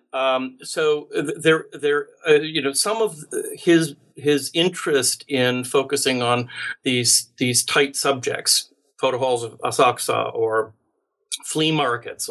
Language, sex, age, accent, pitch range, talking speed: English, male, 50-69, American, 125-195 Hz, 125 wpm